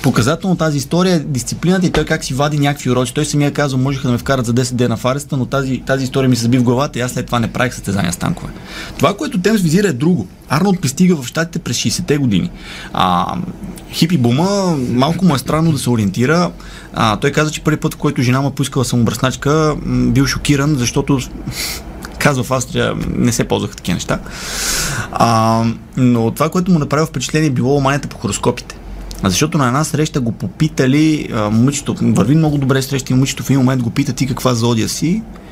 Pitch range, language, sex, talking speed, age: 120-150 Hz, Bulgarian, male, 205 wpm, 30-49